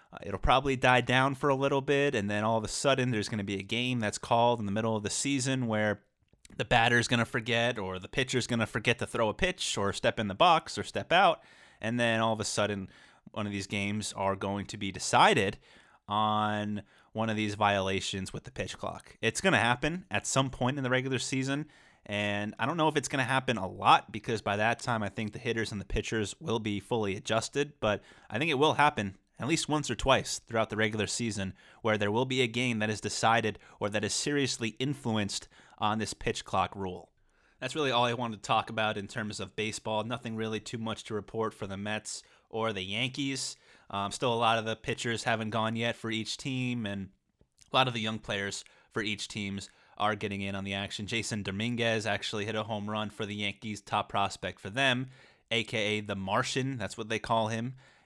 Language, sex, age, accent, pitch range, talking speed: English, male, 30-49, American, 105-120 Hz, 230 wpm